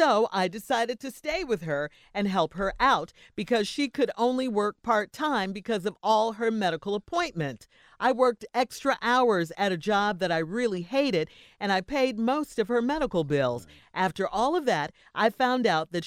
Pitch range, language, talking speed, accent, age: 170-250 Hz, English, 185 wpm, American, 50-69